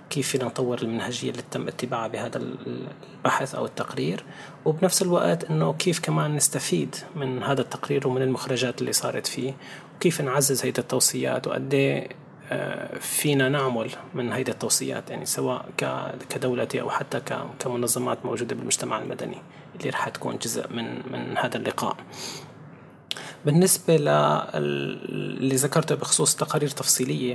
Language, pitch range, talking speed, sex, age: Arabic, 125-145 Hz, 125 wpm, male, 30-49